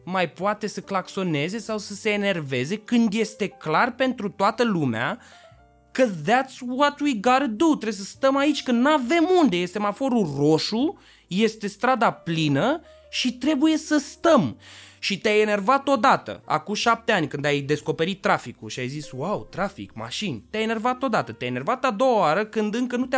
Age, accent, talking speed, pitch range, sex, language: 20-39, native, 170 wpm, 150-240 Hz, male, Romanian